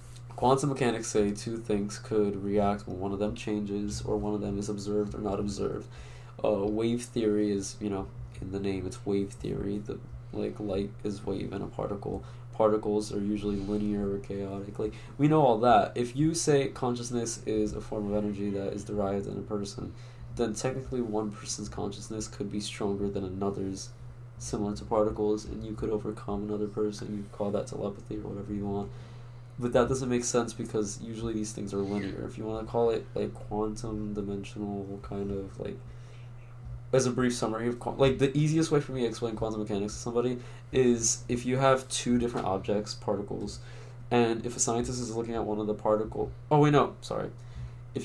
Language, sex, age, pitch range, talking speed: English, male, 20-39, 105-120 Hz, 200 wpm